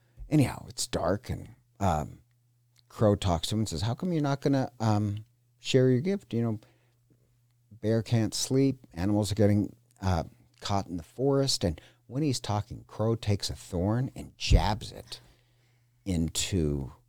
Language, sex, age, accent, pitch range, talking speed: English, male, 50-69, American, 100-120 Hz, 160 wpm